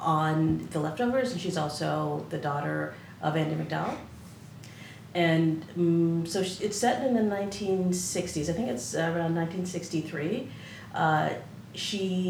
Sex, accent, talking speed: female, American, 130 wpm